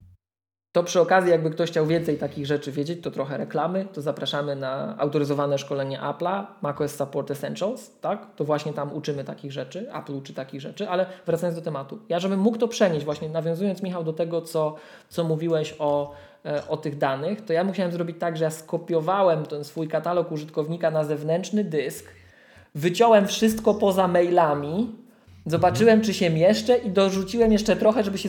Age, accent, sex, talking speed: 20-39, native, male, 175 wpm